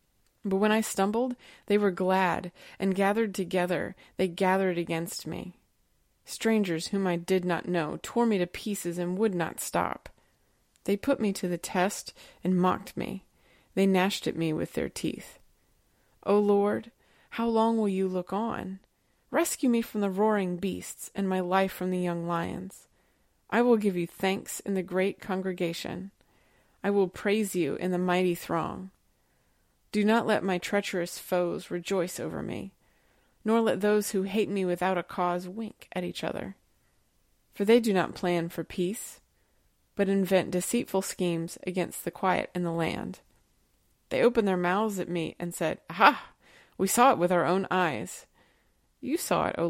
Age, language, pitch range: 20-39, English, 180-215 Hz